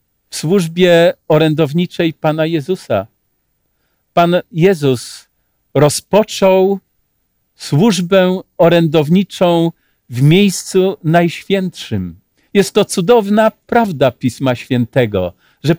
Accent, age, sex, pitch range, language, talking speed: native, 50-69, male, 140-185 Hz, Polish, 75 wpm